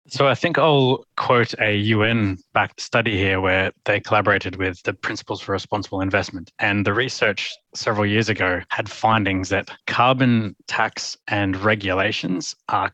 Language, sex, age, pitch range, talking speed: English, male, 20-39, 95-110 Hz, 150 wpm